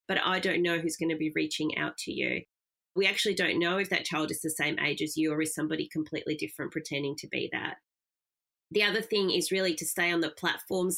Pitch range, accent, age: 155-185 Hz, Australian, 30-49